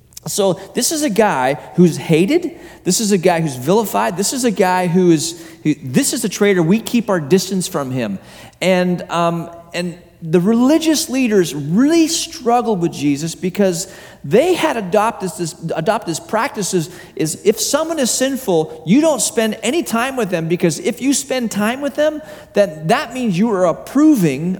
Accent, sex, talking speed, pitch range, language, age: American, male, 185 wpm, 170-235 Hz, English, 40-59